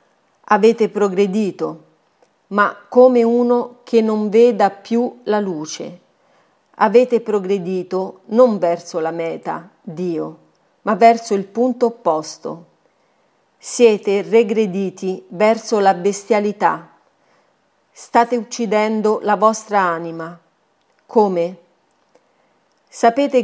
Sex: female